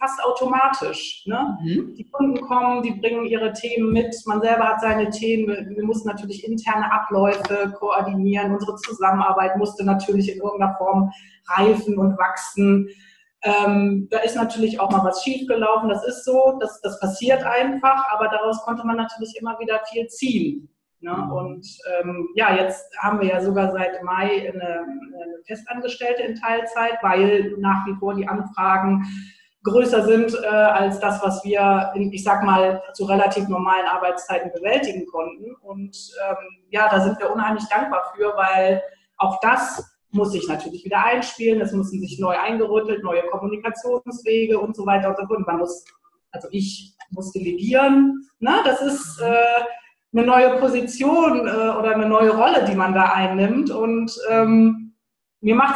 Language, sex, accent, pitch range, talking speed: German, female, German, 195-230 Hz, 160 wpm